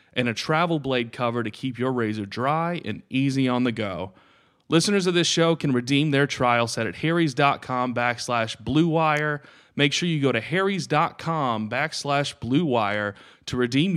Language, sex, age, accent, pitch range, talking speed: English, male, 30-49, American, 115-150 Hz, 165 wpm